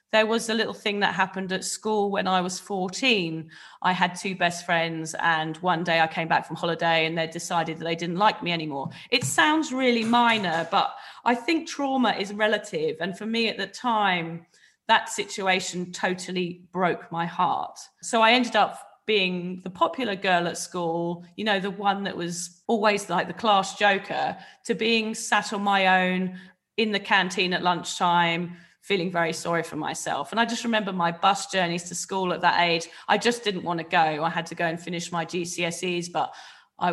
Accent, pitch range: British, 170-220 Hz